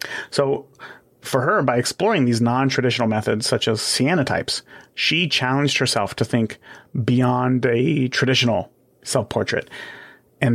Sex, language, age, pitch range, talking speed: male, English, 30-49, 120-140 Hz, 120 wpm